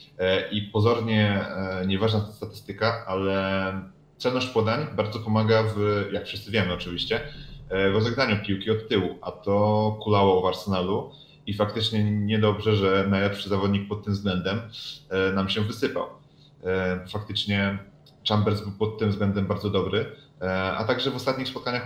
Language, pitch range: Polish, 95-110 Hz